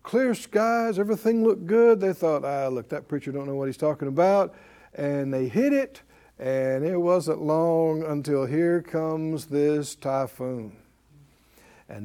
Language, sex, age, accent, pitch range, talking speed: English, male, 60-79, American, 145-190 Hz, 155 wpm